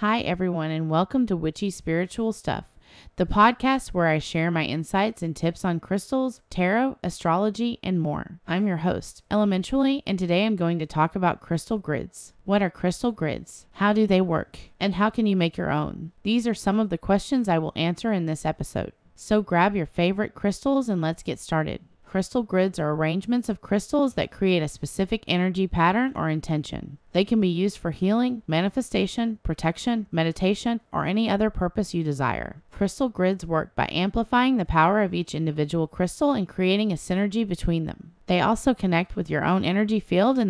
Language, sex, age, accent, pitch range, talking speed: English, female, 30-49, American, 165-215 Hz, 190 wpm